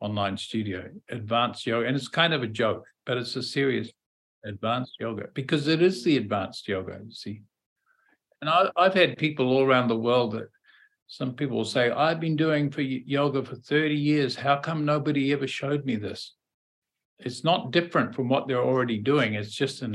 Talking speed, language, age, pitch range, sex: 190 wpm, English, 50-69, 115-140 Hz, male